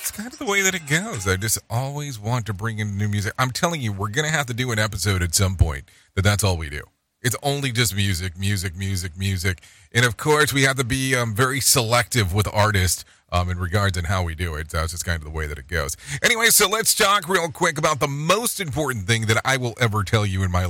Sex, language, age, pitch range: male, English, 40-59, 95-130 Hz